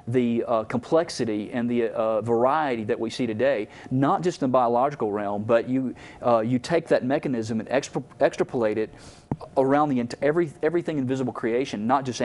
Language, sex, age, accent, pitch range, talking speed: English, male, 40-59, American, 115-140 Hz, 180 wpm